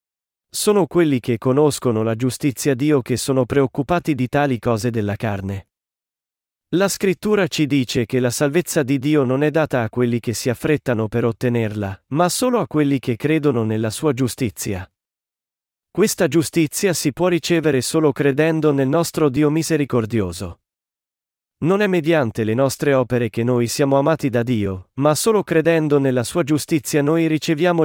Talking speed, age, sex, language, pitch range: 160 wpm, 40-59, male, Italian, 120-155 Hz